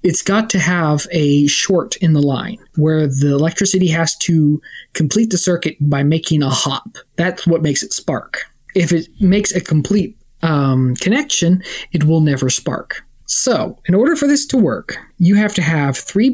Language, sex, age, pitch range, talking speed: English, male, 20-39, 150-185 Hz, 180 wpm